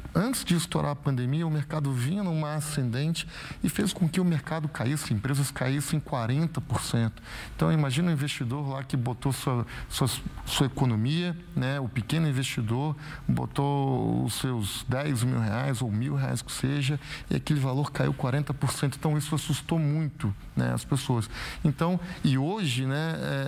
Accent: Brazilian